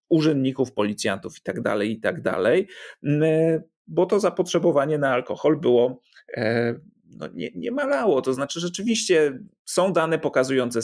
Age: 40-59